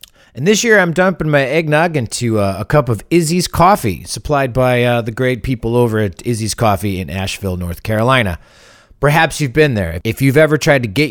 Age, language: 40-59, English